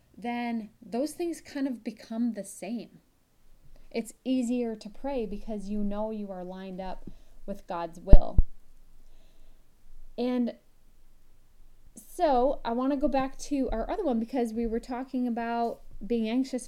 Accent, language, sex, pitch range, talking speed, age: American, English, female, 220-290 Hz, 145 wpm, 30-49